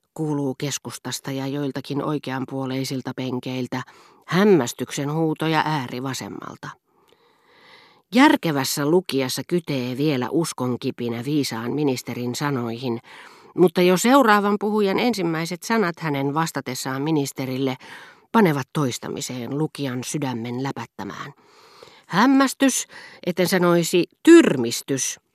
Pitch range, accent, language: 130-185 Hz, native, Finnish